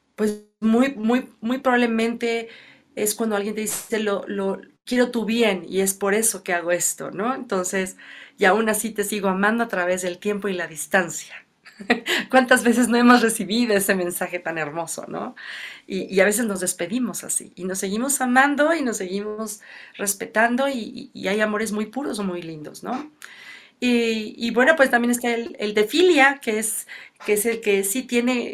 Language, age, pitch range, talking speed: Spanish, 40-59, 190-235 Hz, 190 wpm